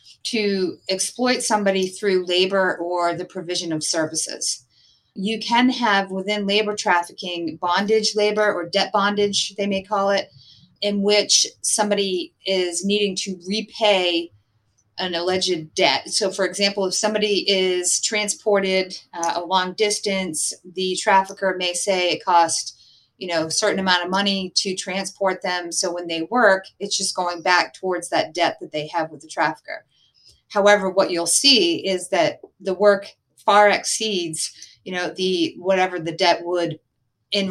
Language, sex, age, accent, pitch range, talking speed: English, female, 30-49, American, 175-205 Hz, 150 wpm